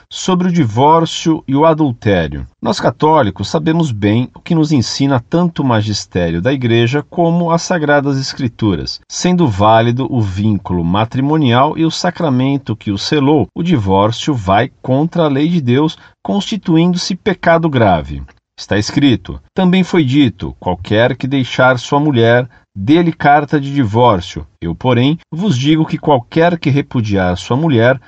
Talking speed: 145 wpm